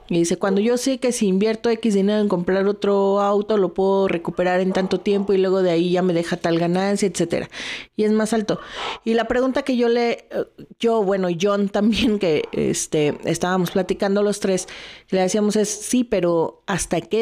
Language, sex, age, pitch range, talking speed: Spanish, female, 40-59, 180-235 Hz, 195 wpm